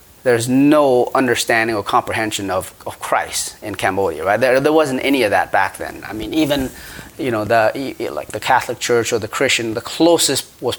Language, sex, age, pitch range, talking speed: English, male, 30-49, 105-130 Hz, 195 wpm